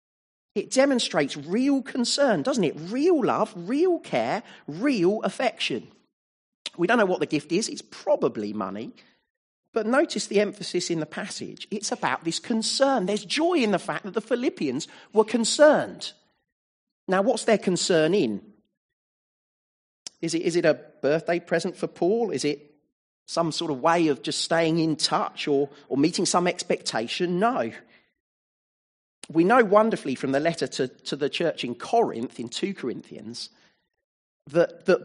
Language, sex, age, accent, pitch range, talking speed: English, male, 40-59, British, 165-255 Hz, 155 wpm